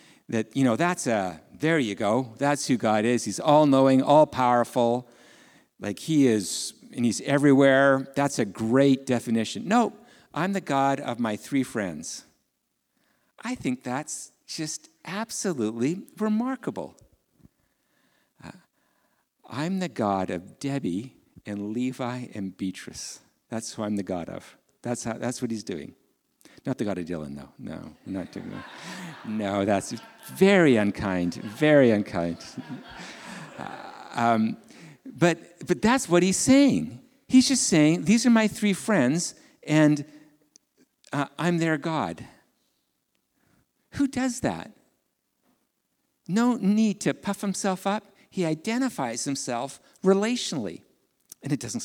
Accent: American